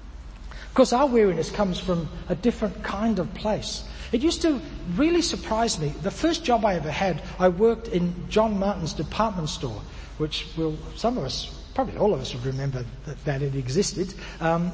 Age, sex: 60-79, male